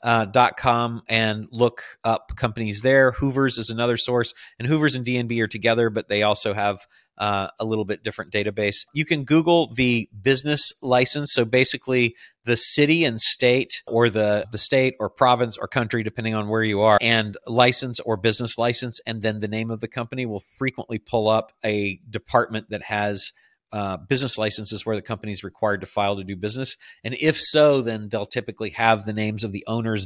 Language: English